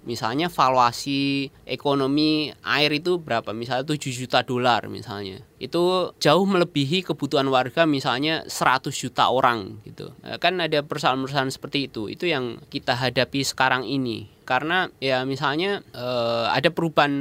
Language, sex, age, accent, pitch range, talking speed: Indonesian, male, 20-39, native, 120-150 Hz, 130 wpm